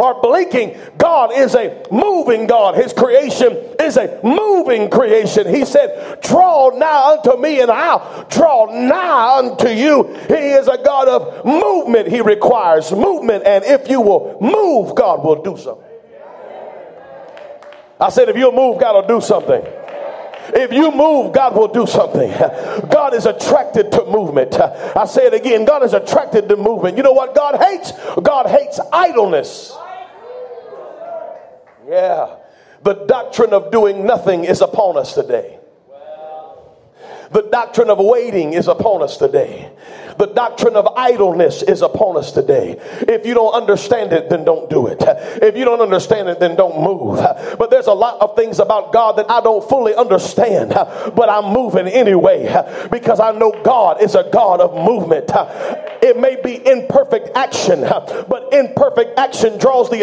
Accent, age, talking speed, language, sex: American, 50-69, 160 wpm, English, male